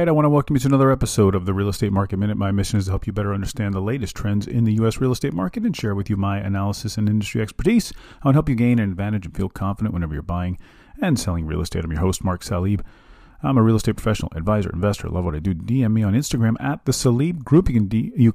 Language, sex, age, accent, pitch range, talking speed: English, male, 40-59, American, 95-120 Hz, 280 wpm